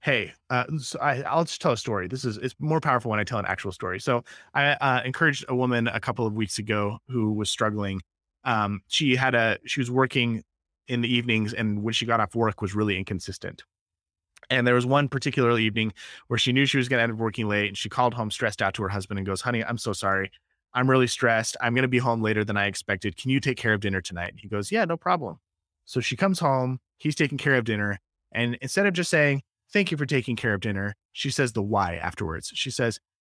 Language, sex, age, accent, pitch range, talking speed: English, male, 20-39, American, 100-130 Hz, 250 wpm